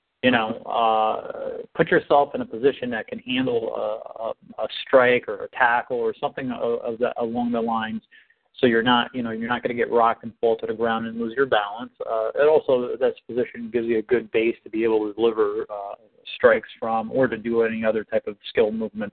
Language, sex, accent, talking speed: English, male, American, 215 wpm